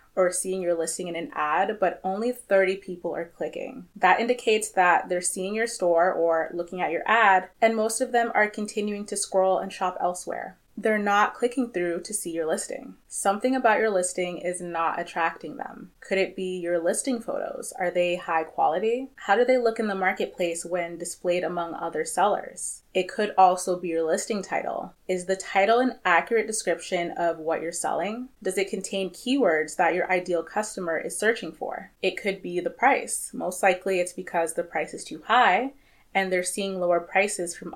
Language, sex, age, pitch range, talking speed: English, female, 20-39, 175-210 Hz, 195 wpm